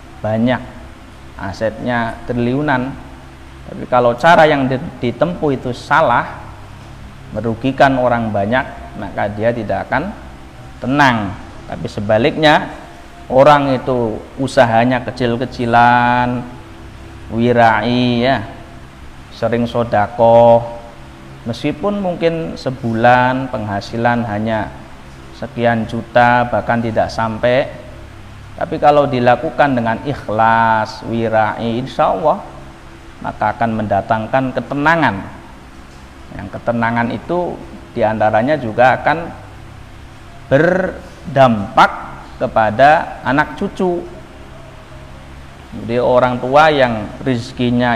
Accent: native